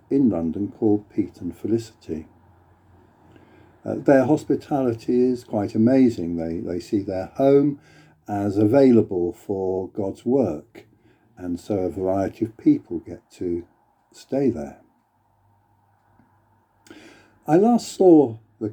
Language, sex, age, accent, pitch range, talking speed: English, male, 60-79, British, 100-115 Hz, 115 wpm